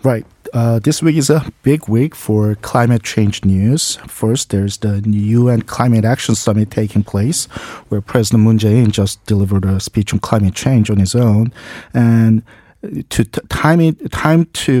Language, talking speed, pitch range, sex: English, 165 wpm, 100-120 Hz, male